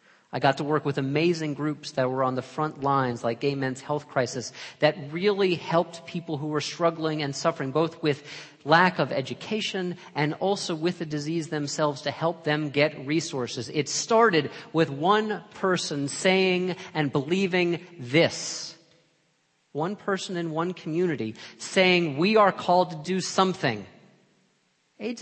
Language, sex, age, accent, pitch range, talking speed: English, male, 40-59, American, 140-175 Hz, 155 wpm